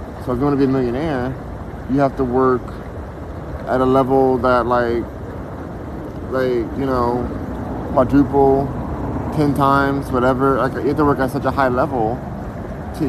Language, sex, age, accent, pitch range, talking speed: English, male, 20-39, American, 110-135 Hz, 160 wpm